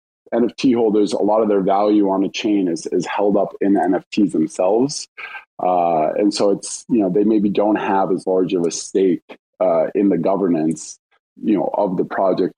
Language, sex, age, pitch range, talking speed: English, male, 20-39, 90-110 Hz, 200 wpm